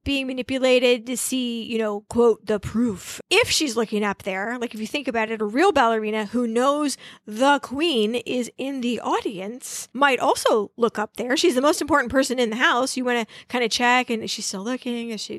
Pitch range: 210-255 Hz